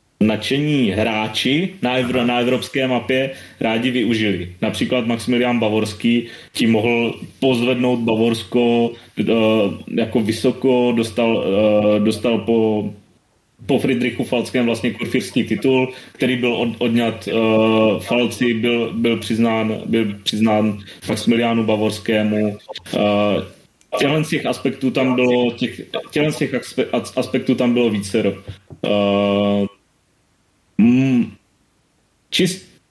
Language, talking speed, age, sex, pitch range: Czech, 100 wpm, 30-49, male, 110-130 Hz